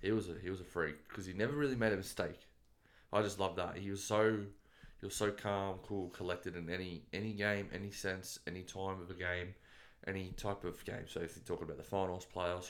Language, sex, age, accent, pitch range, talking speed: English, male, 20-39, Australian, 90-110 Hz, 240 wpm